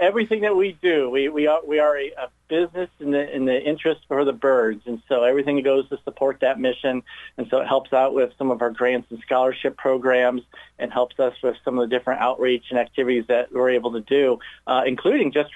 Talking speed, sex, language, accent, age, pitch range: 230 wpm, male, English, American, 40-59, 125-145 Hz